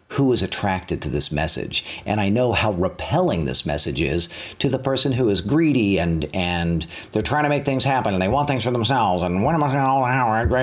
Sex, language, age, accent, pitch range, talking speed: male, English, 50-69, American, 85-125 Hz, 225 wpm